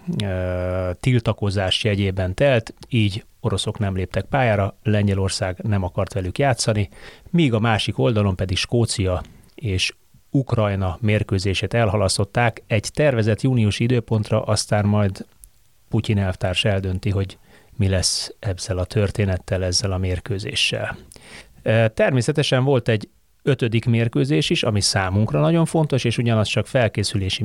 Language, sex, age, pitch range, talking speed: Hungarian, male, 30-49, 100-120 Hz, 120 wpm